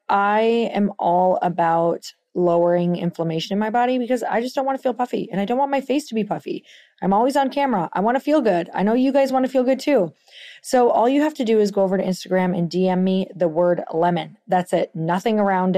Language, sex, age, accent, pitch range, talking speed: English, female, 30-49, American, 185-255 Hz, 245 wpm